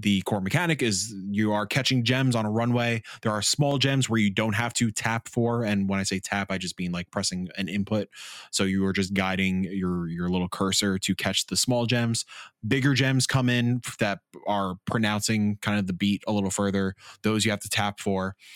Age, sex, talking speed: 20-39, male, 220 wpm